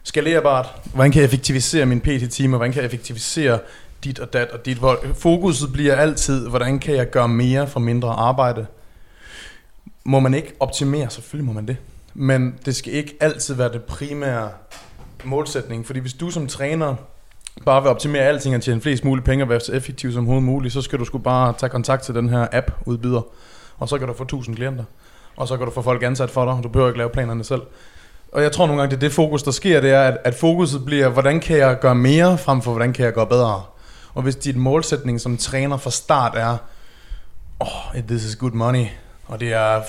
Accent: native